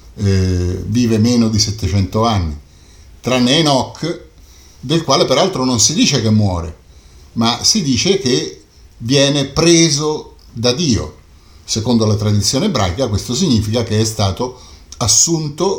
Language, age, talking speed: Italian, 50-69, 130 wpm